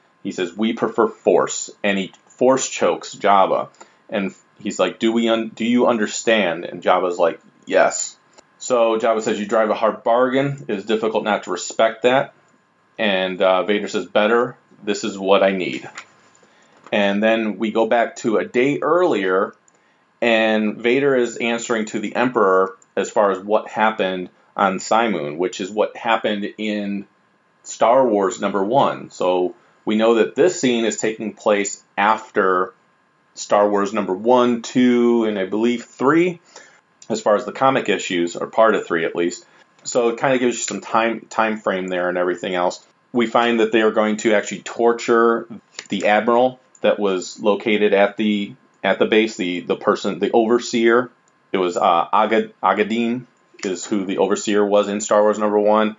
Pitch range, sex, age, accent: 100-115 Hz, male, 30-49, American